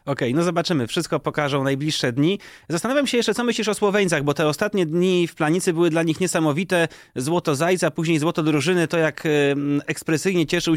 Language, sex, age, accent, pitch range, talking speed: Polish, male, 30-49, native, 160-195 Hz, 190 wpm